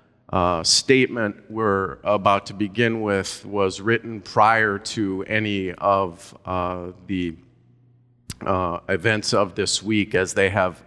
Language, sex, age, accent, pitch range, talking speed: English, male, 40-59, American, 95-110 Hz, 130 wpm